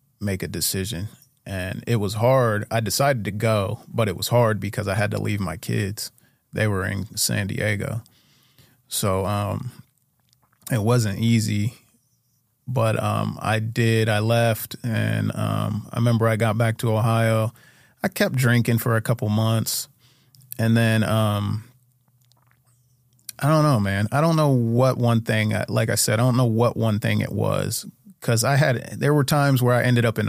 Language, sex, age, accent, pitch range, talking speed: English, male, 30-49, American, 105-125 Hz, 175 wpm